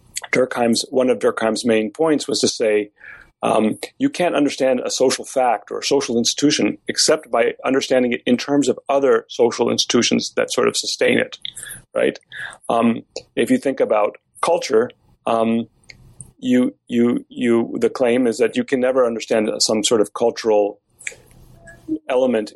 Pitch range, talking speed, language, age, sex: 110-135 Hz, 155 wpm, English, 40-59, male